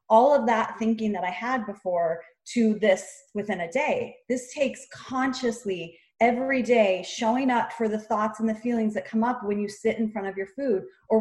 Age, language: 30-49, English